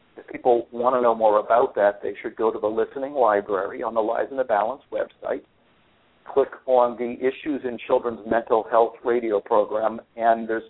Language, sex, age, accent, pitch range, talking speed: English, male, 60-79, American, 115-130 Hz, 190 wpm